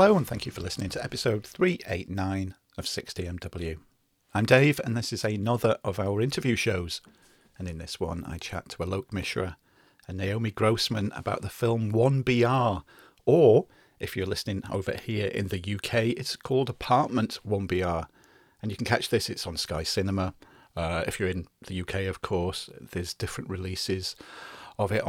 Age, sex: 40-59, male